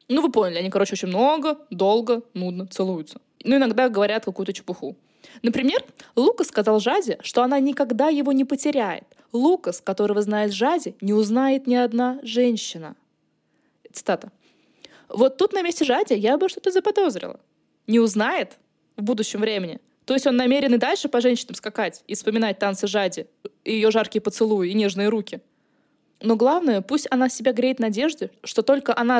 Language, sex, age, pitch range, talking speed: Russian, female, 20-39, 205-270 Hz, 160 wpm